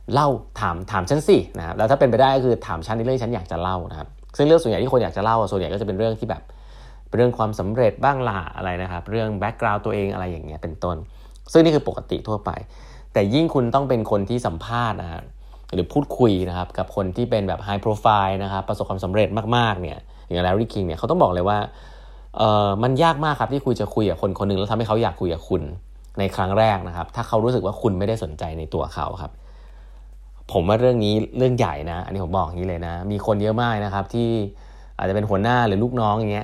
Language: Thai